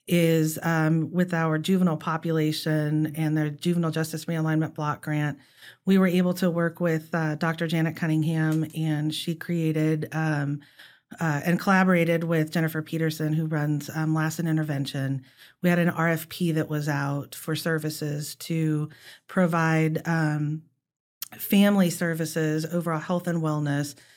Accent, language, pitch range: American, English, 155-170 Hz